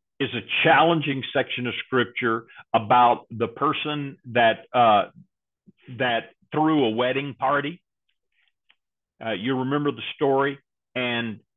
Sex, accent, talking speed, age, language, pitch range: male, American, 115 wpm, 50-69, English, 120-155 Hz